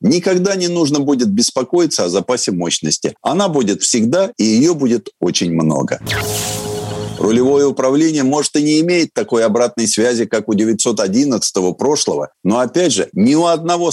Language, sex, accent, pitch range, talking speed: Russian, male, native, 120-170 Hz, 150 wpm